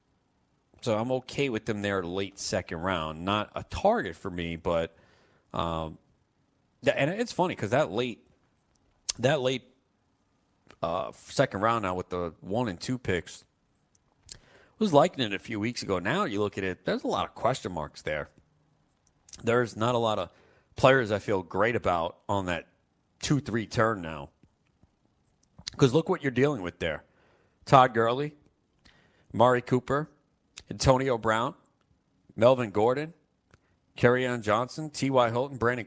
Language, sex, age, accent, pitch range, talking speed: English, male, 30-49, American, 105-135 Hz, 150 wpm